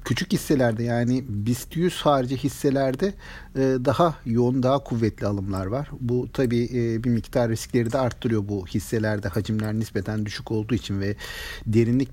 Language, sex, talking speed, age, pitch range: Turkish, male, 145 wpm, 50-69, 115-150 Hz